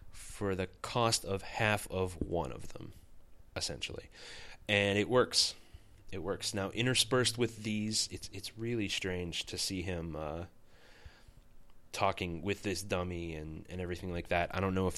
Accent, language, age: American, English, 30-49